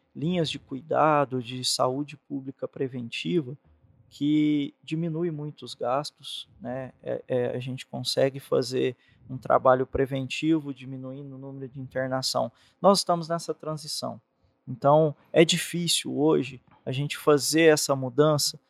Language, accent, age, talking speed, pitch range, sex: Portuguese, Brazilian, 20-39, 120 wpm, 130-150 Hz, male